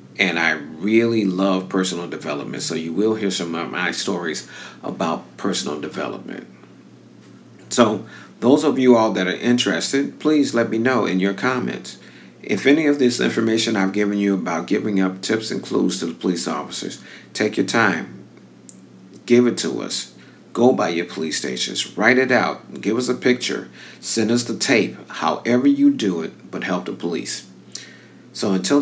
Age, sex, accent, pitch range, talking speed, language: 50-69, male, American, 90-120 Hz, 175 wpm, English